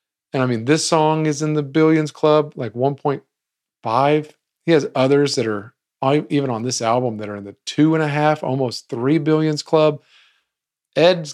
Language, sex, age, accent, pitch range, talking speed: English, male, 40-59, American, 110-150 Hz, 180 wpm